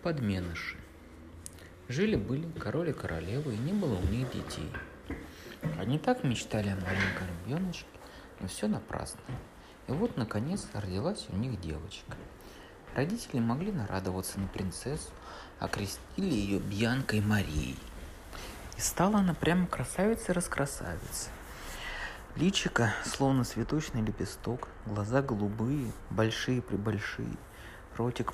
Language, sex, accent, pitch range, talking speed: Russian, male, native, 95-130 Hz, 110 wpm